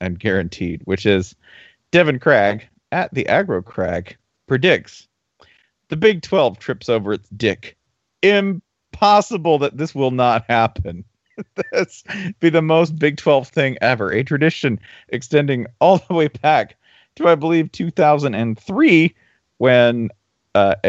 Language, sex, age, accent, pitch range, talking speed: English, male, 40-59, American, 105-140 Hz, 140 wpm